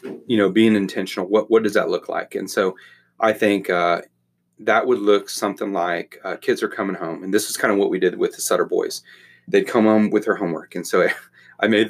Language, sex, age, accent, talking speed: English, male, 30-49, American, 240 wpm